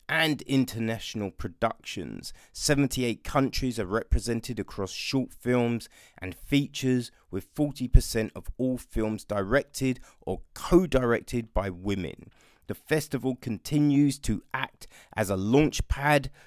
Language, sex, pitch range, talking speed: English, male, 100-130 Hz, 115 wpm